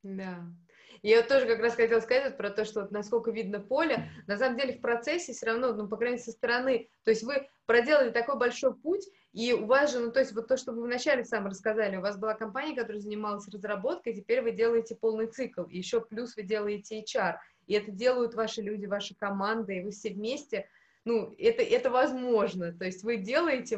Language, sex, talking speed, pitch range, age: Russian, female, 220 wpm, 200-235 Hz, 20-39